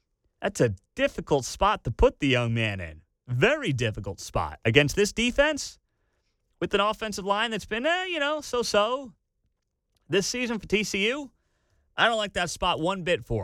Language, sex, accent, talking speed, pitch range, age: English, male, American, 170 wpm, 120-165 Hz, 30-49